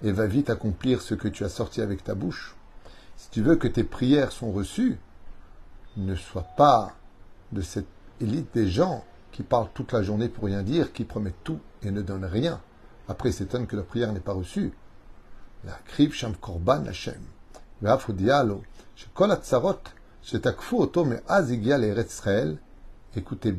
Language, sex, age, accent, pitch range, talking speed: French, male, 50-69, French, 90-125 Hz, 135 wpm